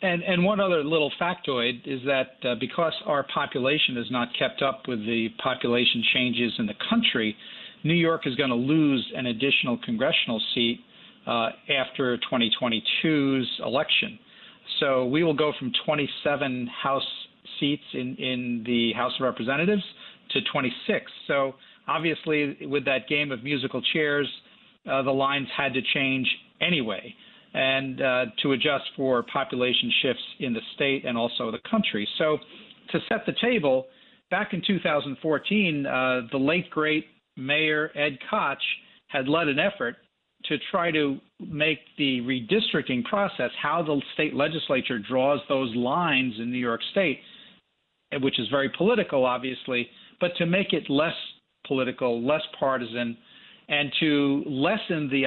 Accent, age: American, 50-69